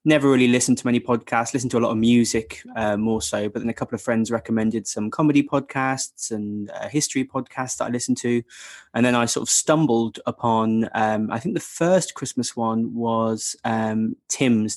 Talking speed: 205 wpm